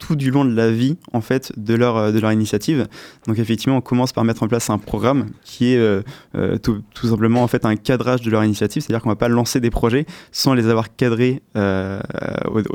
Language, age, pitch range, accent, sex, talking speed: French, 20-39, 110-130 Hz, French, male, 225 wpm